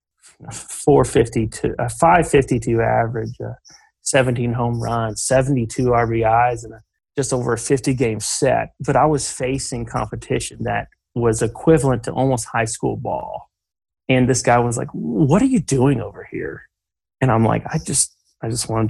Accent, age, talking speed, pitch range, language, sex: American, 30-49, 155 wpm, 115-130 Hz, English, male